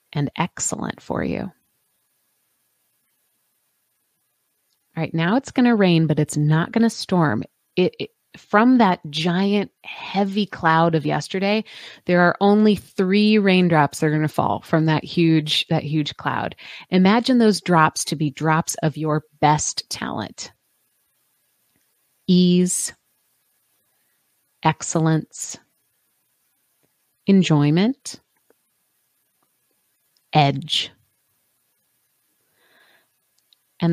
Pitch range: 160-210 Hz